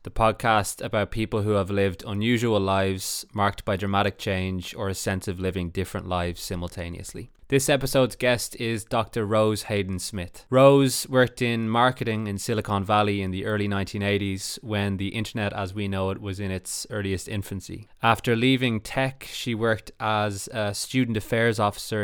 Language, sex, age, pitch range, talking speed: English, male, 20-39, 100-120 Hz, 165 wpm